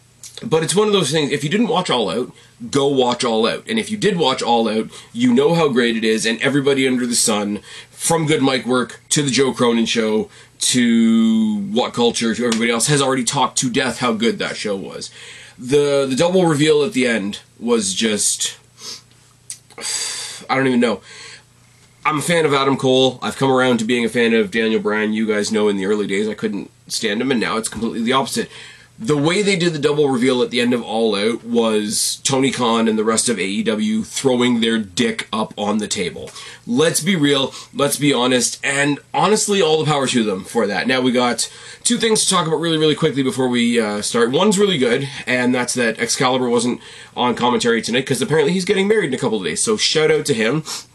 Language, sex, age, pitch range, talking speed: English, male, 30-49, 120-175 Hz, 225 wpm